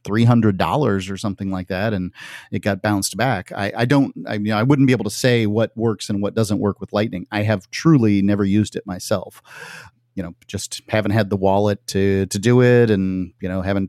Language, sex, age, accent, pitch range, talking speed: English, male, 30-49, American, 95-115 Hz, 225 wpm